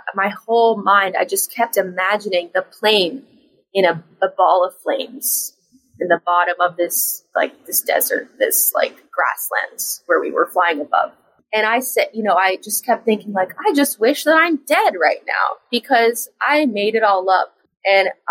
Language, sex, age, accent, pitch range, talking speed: English, female, 20-39, American, 190-255 Hz, 185 wpm